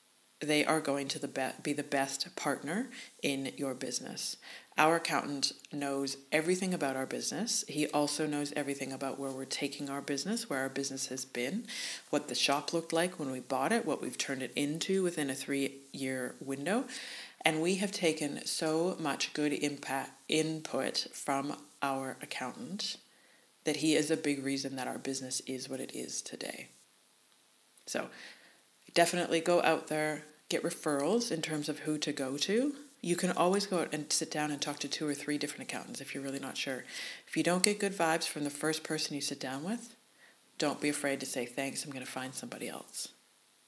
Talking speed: 190 wpm